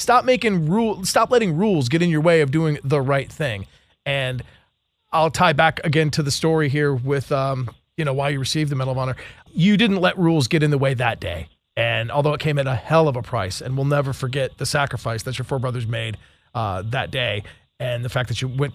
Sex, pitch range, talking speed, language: male, 115-150 Hz, 240 wpm, English